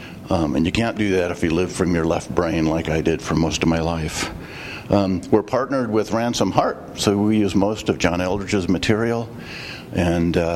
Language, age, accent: English, 50-69, American